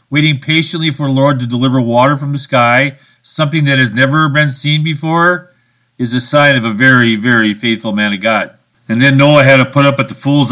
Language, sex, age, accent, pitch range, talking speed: English, male, 50-69, American, 120-155 Hz, 220 wpm